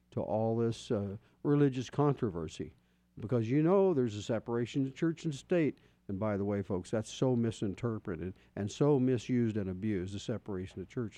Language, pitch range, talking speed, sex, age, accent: English, 105-135 Hz, 175 wpm, male, 50-69, American